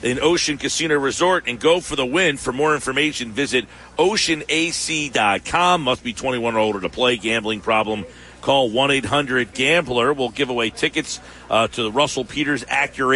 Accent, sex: American, male